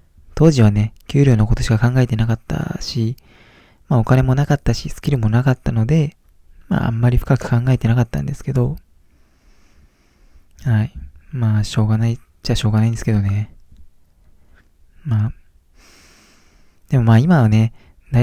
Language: Japanese